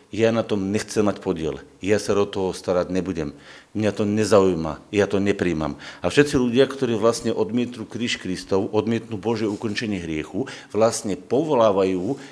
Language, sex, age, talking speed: Slovak, male, 50-69, 155 wpm